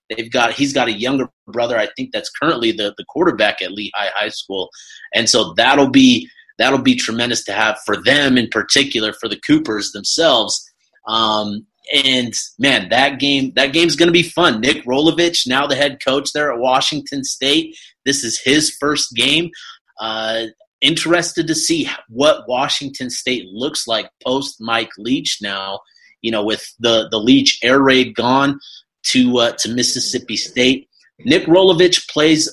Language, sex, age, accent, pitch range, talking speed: English, male, 30-49, American, 120-165 Hz, 165 wpm